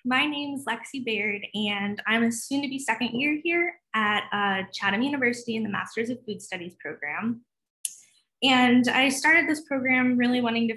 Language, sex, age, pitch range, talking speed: English, female, 10-29, 200-260 Hz, 185 wpm